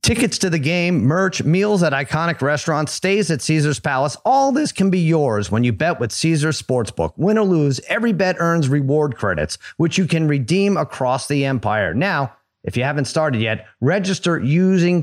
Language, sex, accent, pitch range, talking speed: English, male, American, 130-165 Hz, 190 wpm